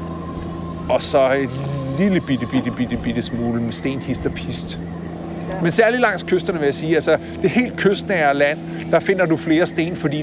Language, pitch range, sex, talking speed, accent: Danish, 125-175 Hz, male, 180 wpm, native